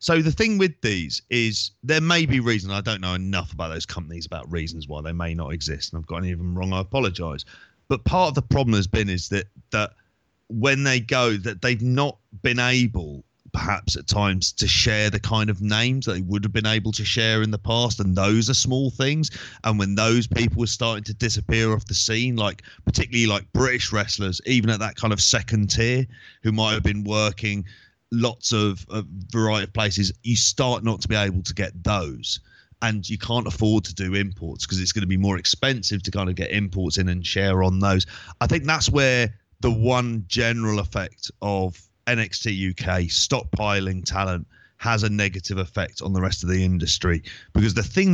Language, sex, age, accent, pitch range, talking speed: English, male, 30-49, British, 95-115 Hz, 210 wpm